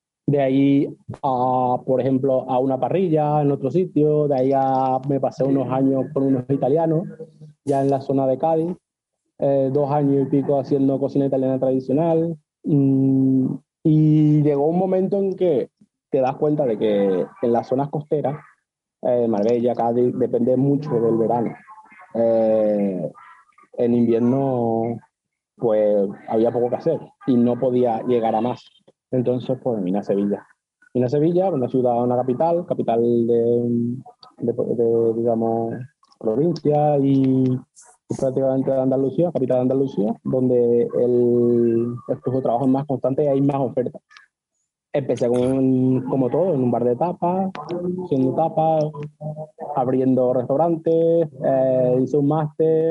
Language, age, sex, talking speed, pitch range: Spanish, 30-49, male, 145 wpm, 125-150 Hz